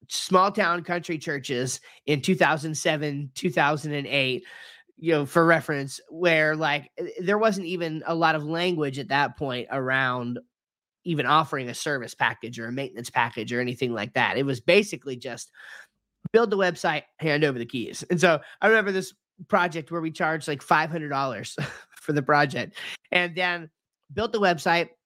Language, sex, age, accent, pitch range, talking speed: English, male, 30-49, American, 145-180 Hz, 160 wpm